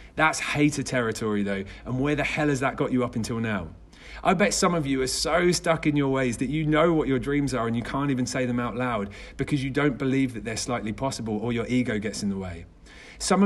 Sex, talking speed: male, 255 wpm